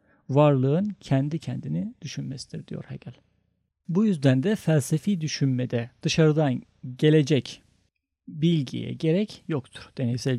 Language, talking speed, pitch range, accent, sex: Turkish, 100 wpm, 130-170 Hz, native, male